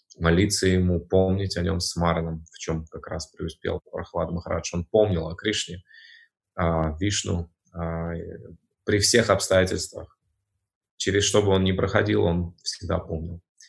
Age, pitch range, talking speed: 20-39, 85-100 Hz, 140 wpm